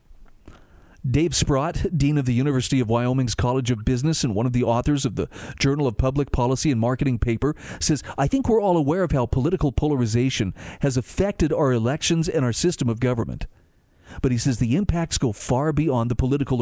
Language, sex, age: English, male, 40-59